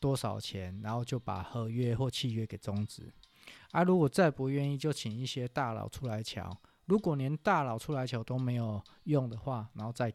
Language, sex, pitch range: Chinese, male, 110-145 Hz